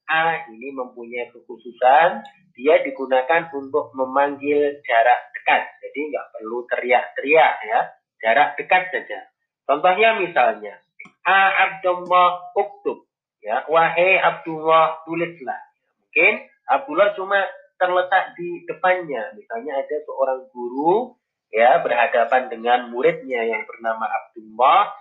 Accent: native